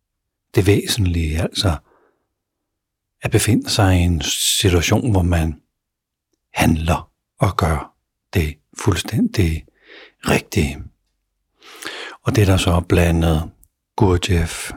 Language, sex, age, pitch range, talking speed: Danish, male, 60-79, 80-95 Hz, 100 wpm